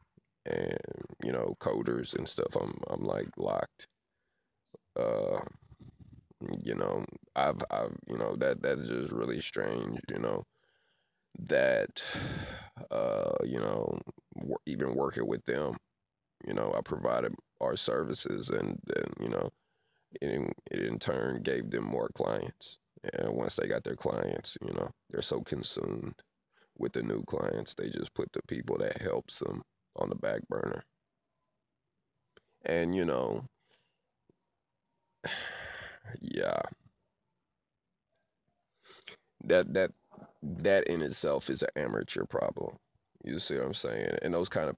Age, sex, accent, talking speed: 20-39, male, American, 135 wpm